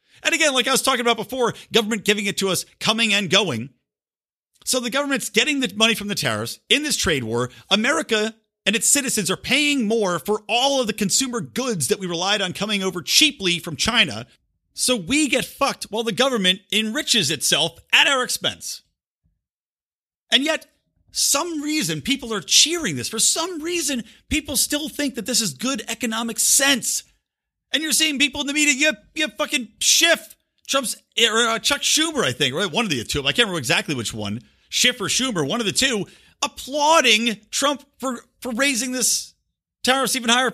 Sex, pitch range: male, 180-270 Hz